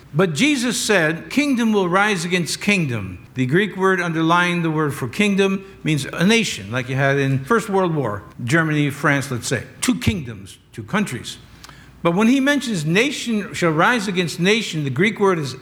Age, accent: 60-79, American